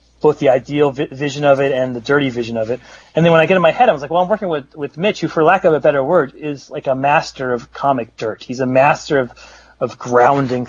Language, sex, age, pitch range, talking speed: English, male, 30-49, 120-150 Hz, 275 wpm